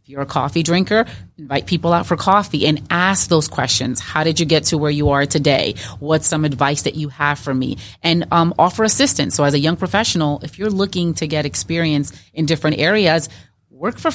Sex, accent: female, American